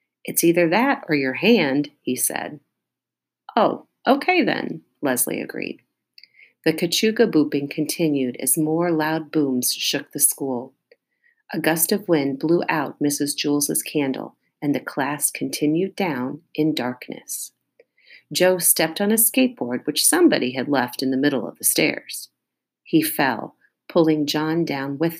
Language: English